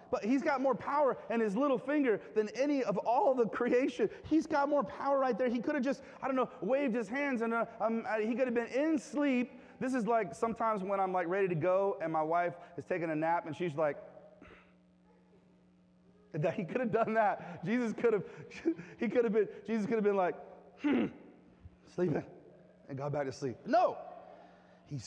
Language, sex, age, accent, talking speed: English, male, 30-49, American, 210 wpm